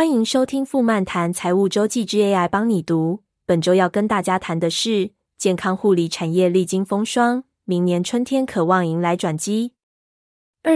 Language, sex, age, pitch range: Chinese, female, 20-39, 175-215 Hz